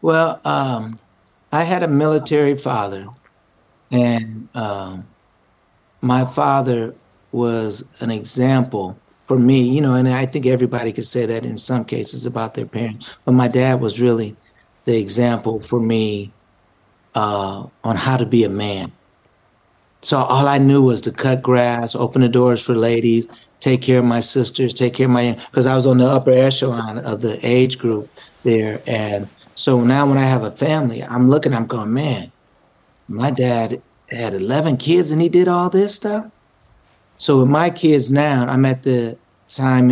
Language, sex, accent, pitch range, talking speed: English, male, American, 115-130 Hz, 170 wpm